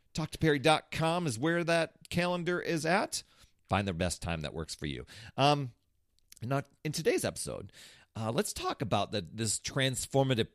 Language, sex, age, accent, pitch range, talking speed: English, male, 40-59, American, 95-135 Hz, 165 wpm